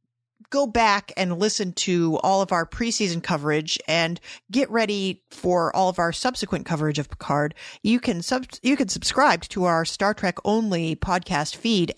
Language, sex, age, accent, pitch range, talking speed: English, female, 40-59, American, 165-215 Hz, 165 wpm